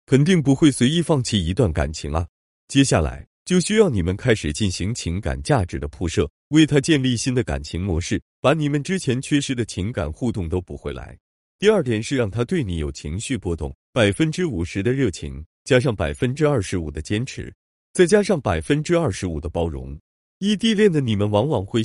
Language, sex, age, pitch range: Chinese, male, 30-49, 80-140 Hz